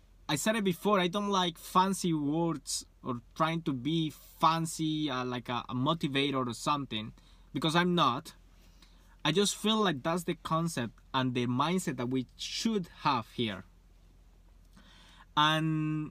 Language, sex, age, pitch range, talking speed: English, male, 20-39, 110-165 Hz, 150 wpm